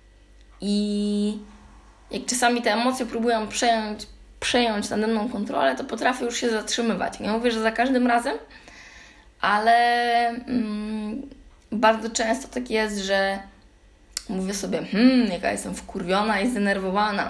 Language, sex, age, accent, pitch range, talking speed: Polish, female, 20-39, native, 205-245 Hz, 130 wpm